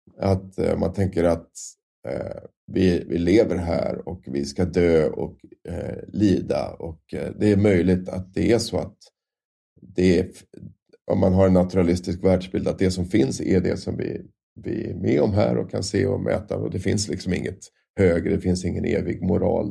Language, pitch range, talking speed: Swedish, 90-100 Hz, 190 wpm